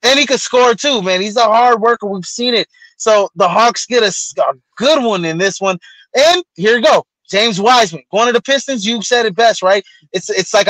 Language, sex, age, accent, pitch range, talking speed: English, male, 20-39, American, 195-245 Hz, 235 wpm